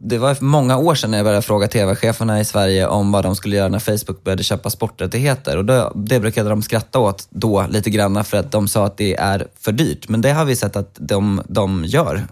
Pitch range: 100-125 Hz